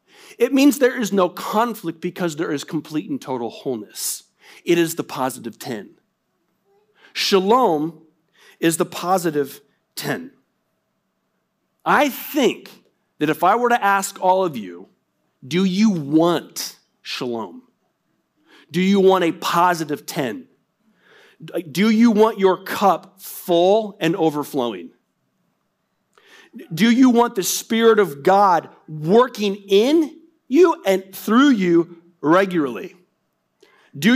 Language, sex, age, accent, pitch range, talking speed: English, male, 40-59, American, 165-235 Hz, 120 wpm